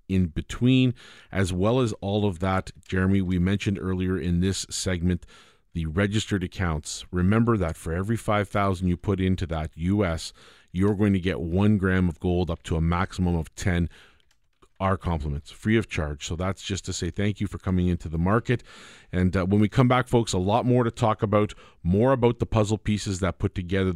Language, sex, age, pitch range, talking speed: English, male, 40-59, 90-110 Hz, 200 wpm